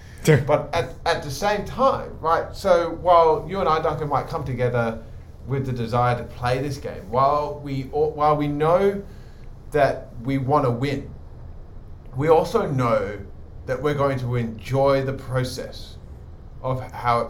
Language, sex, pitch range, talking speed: English, male, 115-150 Hz, 165 wpm